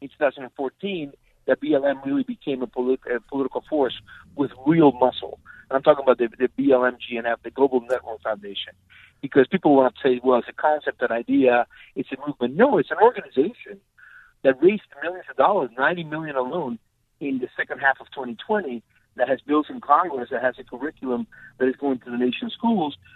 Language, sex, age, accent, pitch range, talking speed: English, male, 50-69, American, 125-150 Hz, 190 wpm